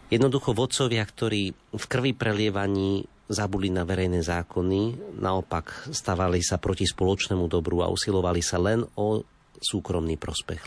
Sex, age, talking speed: male, 40-59, 130 wpm